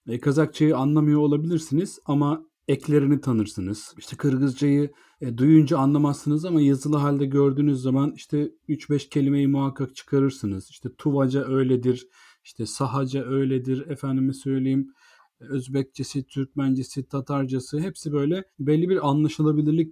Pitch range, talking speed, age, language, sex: 120-150 Hz, 120 wpm, 40-59, Turkish, male